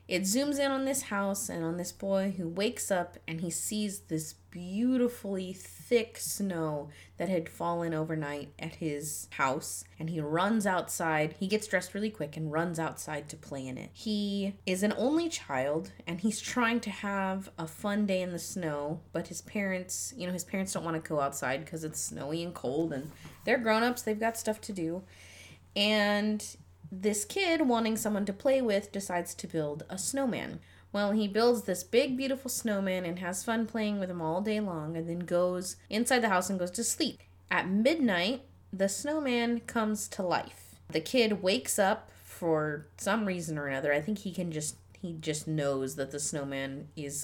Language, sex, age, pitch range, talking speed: English, female, 20-39, 155-215 Hz, 190 wpm